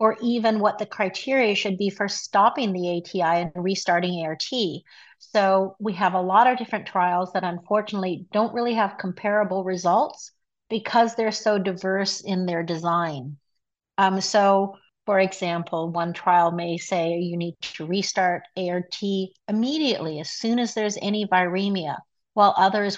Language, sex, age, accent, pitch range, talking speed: English, female, 50-69, American, 180-215 Hz, 150 wpm